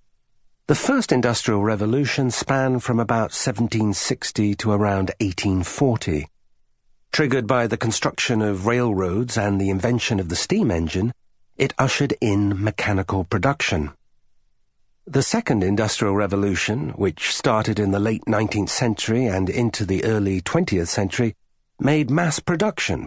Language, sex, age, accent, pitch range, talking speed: English, male, 50-69, British, 95-125 Hz, 125 wpm